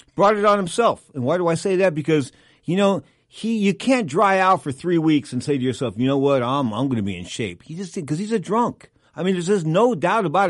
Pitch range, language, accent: 120-170 Hz, English, American